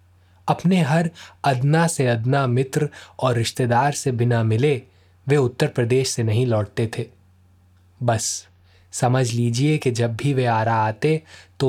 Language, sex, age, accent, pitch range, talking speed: Hindi, male, 20-39, native, 110-140 Hz, 145 wpm